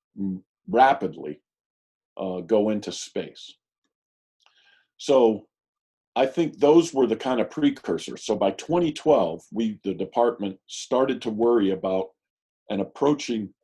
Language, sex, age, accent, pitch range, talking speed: English, male, 50-69, American, 95-120 Hz, 115 wpm